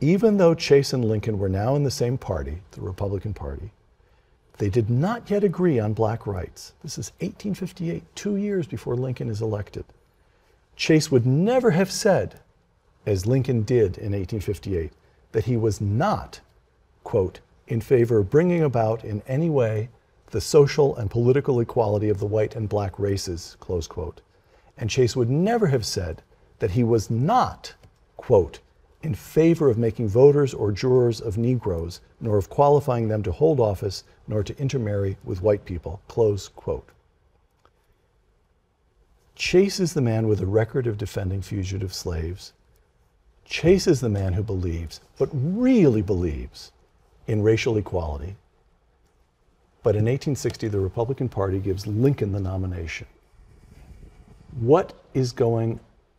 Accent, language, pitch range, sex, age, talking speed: American, English, 95-135 Hz, male, 50-69, 145 wpm